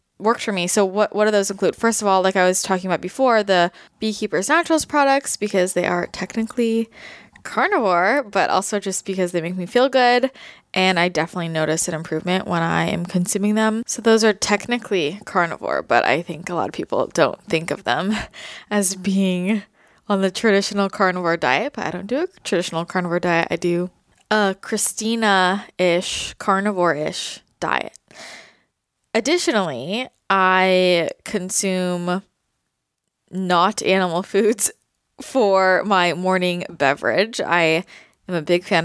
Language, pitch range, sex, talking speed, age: English, 175-220 Hz, female, 155 wpm, 20-39